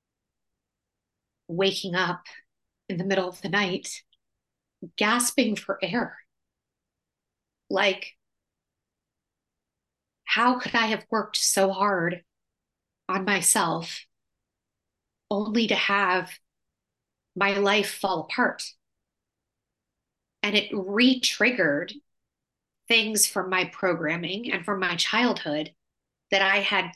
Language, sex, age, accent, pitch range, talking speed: English, female, 30-49, American, 170-200 Hz, 95 wpm